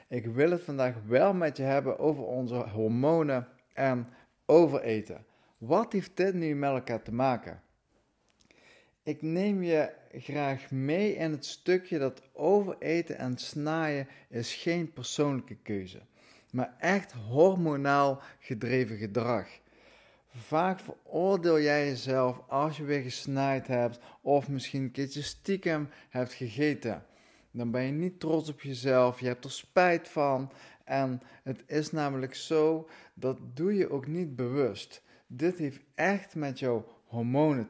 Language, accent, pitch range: Dutch, Dutch, 125-165 Hz